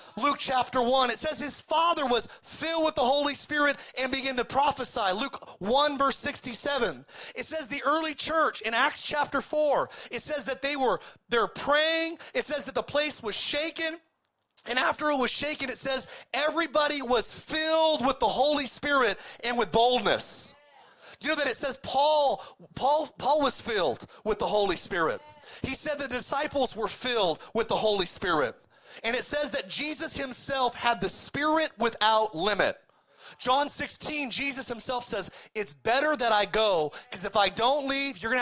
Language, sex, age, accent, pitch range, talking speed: English, male, 30-49, American, 235-290 Hz, 175 wpm